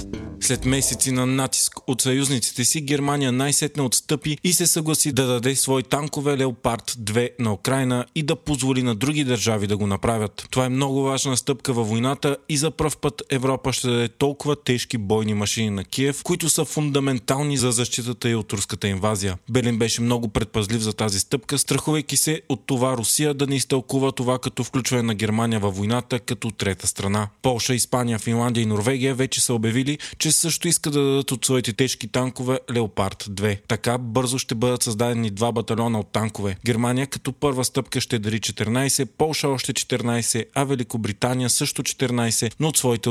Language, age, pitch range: Bulgarian, 20-39, 115-135 Hz